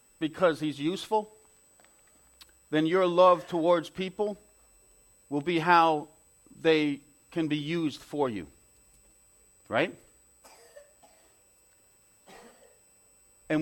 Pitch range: 135-175 Hz